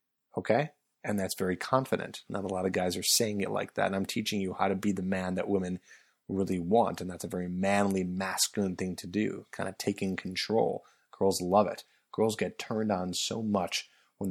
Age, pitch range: 30-49, 90-105 Hz